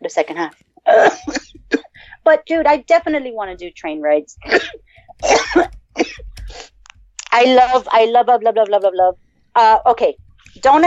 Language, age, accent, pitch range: English, 40-59, American, 190-275 Hz